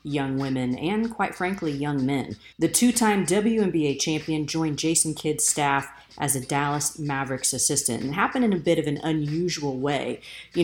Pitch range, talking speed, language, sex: 145-175 Hz, 170 wpm, English, female